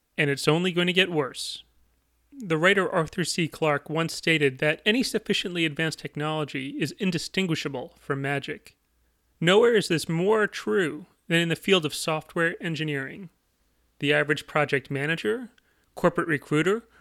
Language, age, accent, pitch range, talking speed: English, 30-49, American, 145-200 Hz, 145 wpm